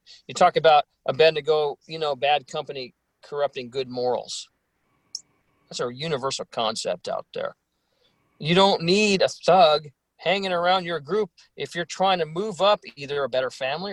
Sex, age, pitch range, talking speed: male, 40-59, 145-190 Hz, 170 wpm